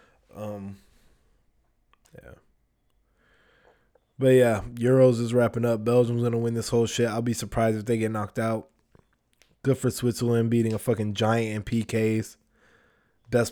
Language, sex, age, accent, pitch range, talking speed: English, male, 20-39, American, 110-135 Hz, 140 wpm